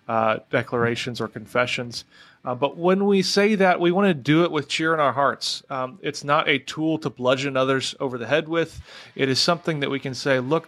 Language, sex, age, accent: English, male, 30-49, American